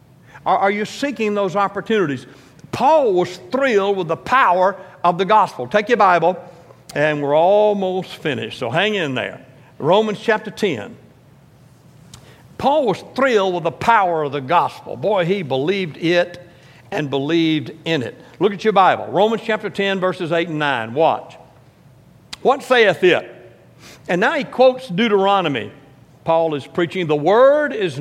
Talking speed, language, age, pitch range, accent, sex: 150 wpm, English, 60-79, 160-215 Hz, American, male